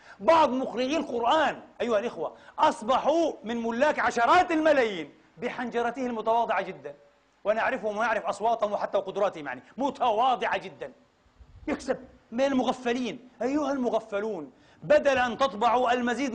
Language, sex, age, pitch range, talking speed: Arabic, male, 40-59, 220-270 Hz, 110 wpm